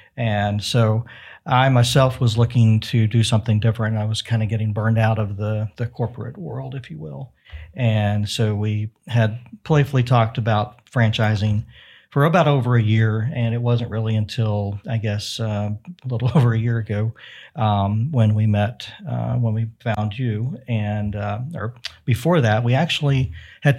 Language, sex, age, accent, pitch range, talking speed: English, male, 50-69, American, 110-125 Hz, 175 wpm